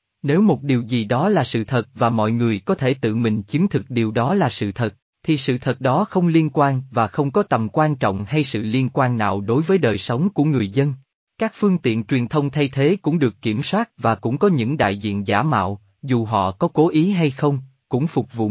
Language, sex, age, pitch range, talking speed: Vietnamese, male, 20-39, 115-160 Hz, 245 wpm